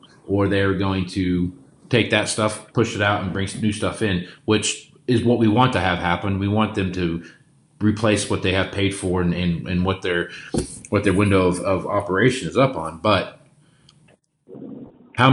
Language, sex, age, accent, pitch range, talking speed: English, male, 30-49, American, 90-110 Hz, 195 wpm